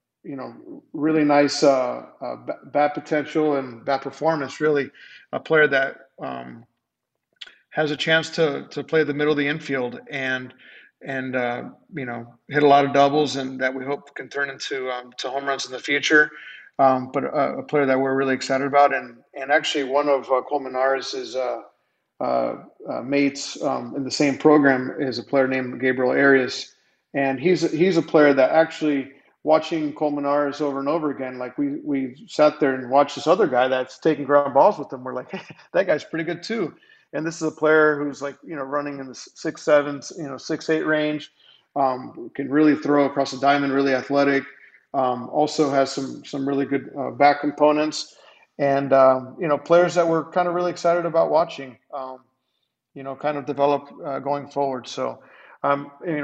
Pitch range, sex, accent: 135-150 Hz, male, American